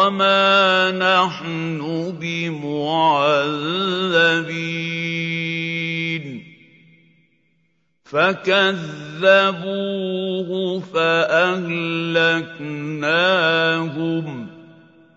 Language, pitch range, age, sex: Arabic, 125-165 Hz, 50-69, male